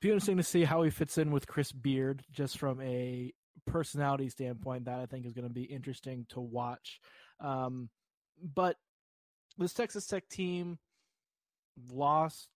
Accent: American